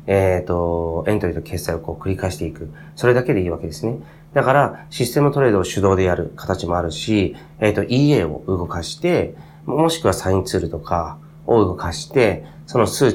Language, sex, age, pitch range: Japanese, male, 30-49, 85-135 Hz